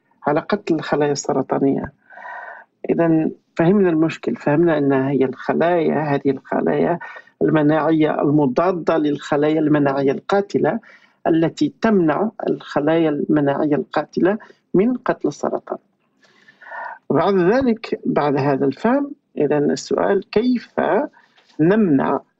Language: Arabic